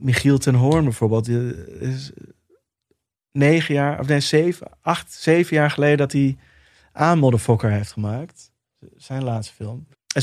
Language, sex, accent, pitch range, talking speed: Dutch, male, Dutch, 120-145 Hz, 145 wpm